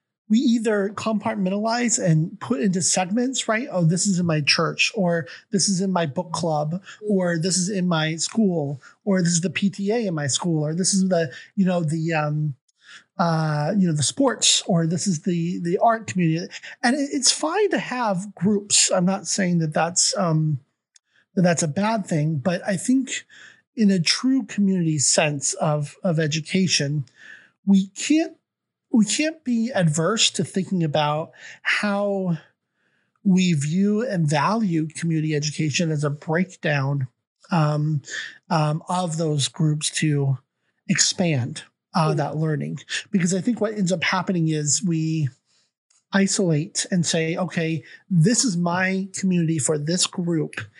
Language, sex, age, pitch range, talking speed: English, male, 30-49, 155-200 Hz, 155 wpm